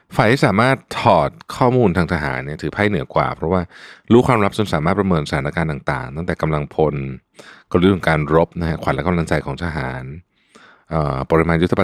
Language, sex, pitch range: Thai, male, 75-95 Hz